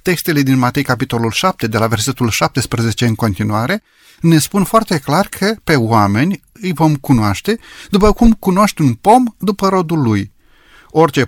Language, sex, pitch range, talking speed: Romanian, male, 115-180 Hz, 160 wpm